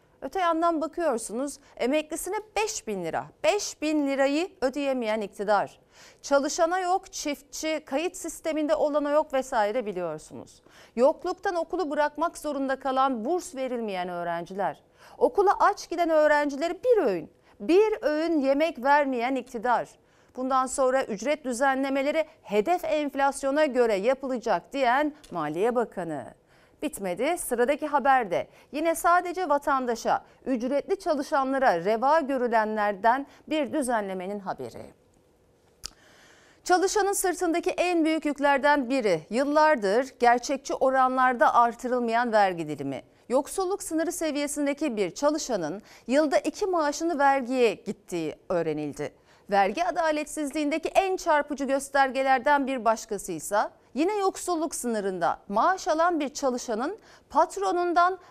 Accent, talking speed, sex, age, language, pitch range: native, 105 wpm, female, 40-59, Turkish, 235-320 Hz